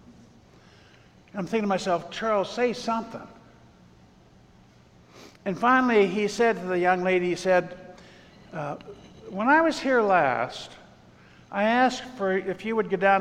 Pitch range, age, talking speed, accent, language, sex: 150-215 Hz, 60-79, 140 wpm, American, English, male